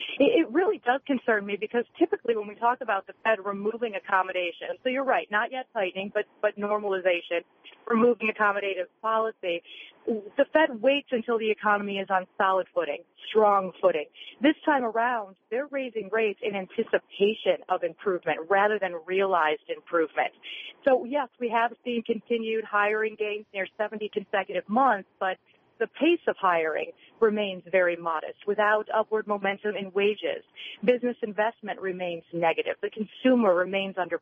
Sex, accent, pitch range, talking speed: female, American, 185-230 Hz, 150 wpm